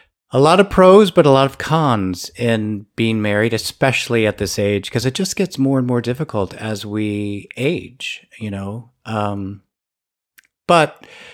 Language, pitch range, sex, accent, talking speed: English, 100-130 Hz, male, American, 165 wpm